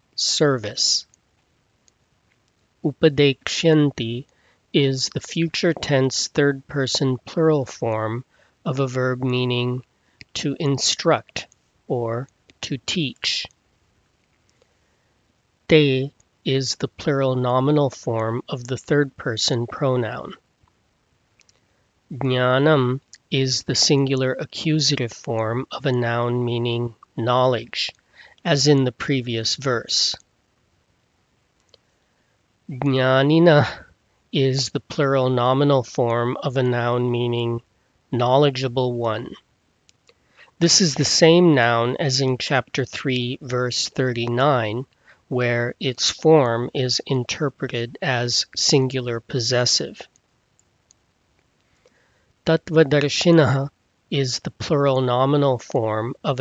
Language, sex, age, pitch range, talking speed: English, male, 40-59, 120-140 Hz, 85 wpm